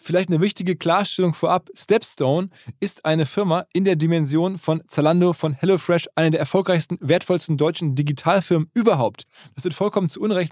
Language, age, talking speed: German, 20-39, 160 wpm